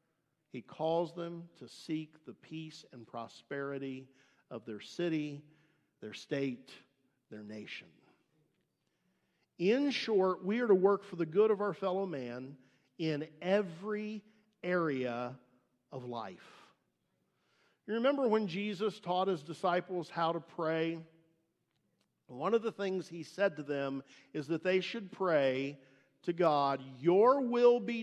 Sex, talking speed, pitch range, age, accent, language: male, 135 wpm, 155-210 Hz, 50-69, American, English